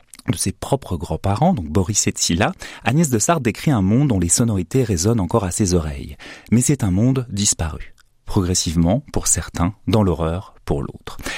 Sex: male